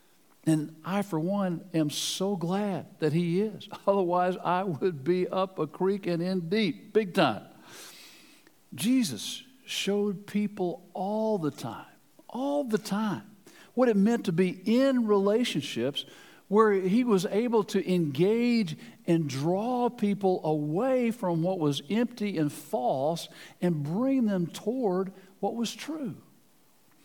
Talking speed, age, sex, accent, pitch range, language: 135 wpm, 60-79, male, American, 165-205 Hz, English